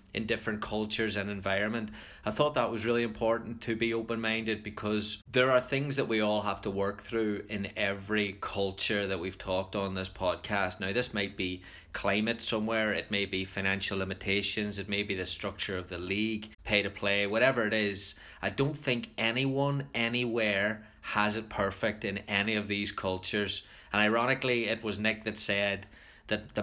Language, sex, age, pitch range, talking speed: English, male, 20-39, 100-110 Hz, 185 wpm